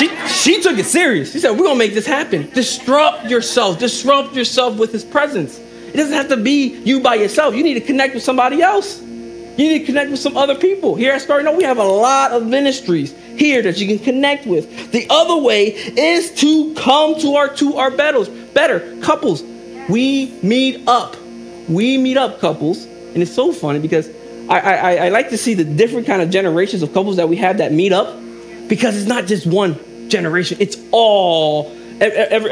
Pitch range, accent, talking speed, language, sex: 175-275 Hz, American, 205 wpm, English, male